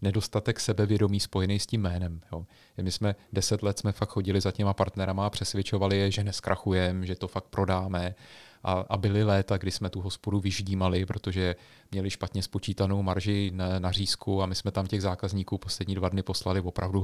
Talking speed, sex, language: 190 wpm, male, Czech